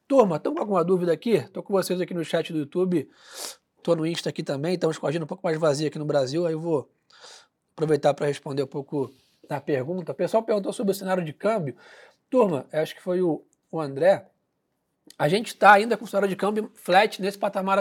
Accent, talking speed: Brazilian, 215 wpm